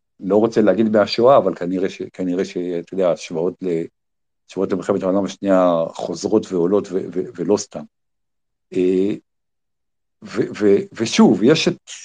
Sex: male